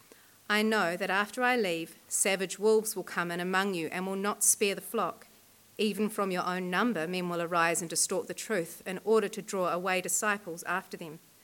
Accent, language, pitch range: Australian, English, 180-230 Hz